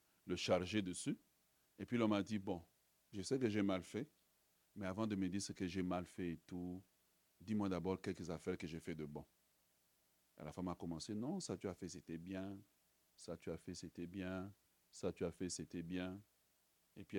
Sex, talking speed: male, 215 wpm